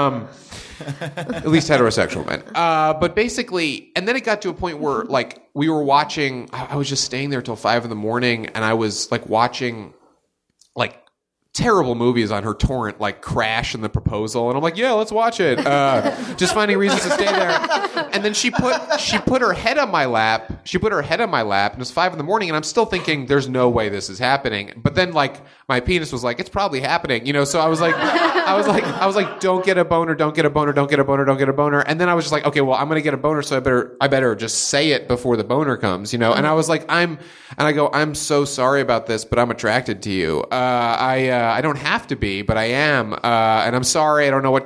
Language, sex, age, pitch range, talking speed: English, male, 30-49, 120-155 Hz, 265 wpm